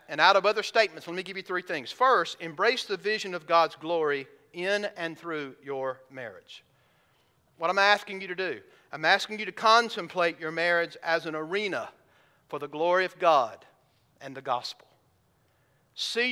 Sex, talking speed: male, 175 wpm